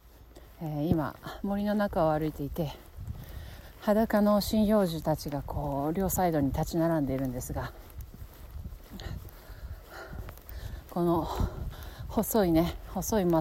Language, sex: Japanese, female